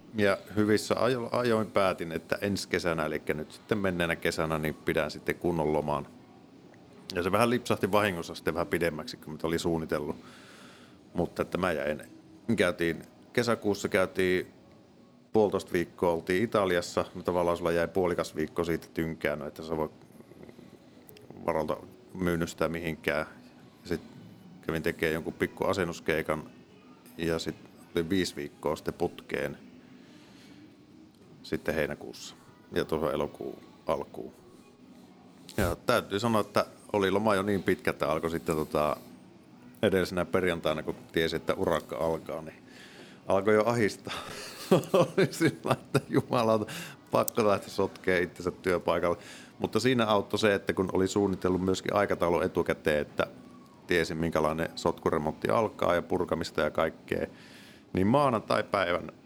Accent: native